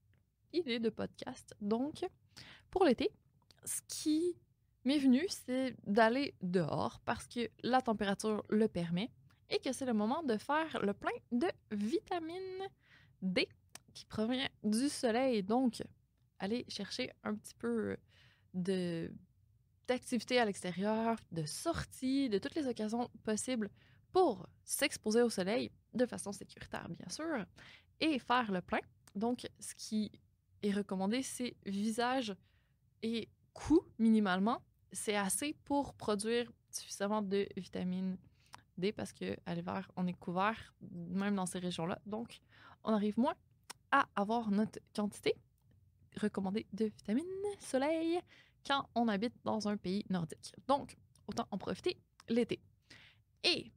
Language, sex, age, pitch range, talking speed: French, female, 20-39, 200-255 Hz, 135 wpm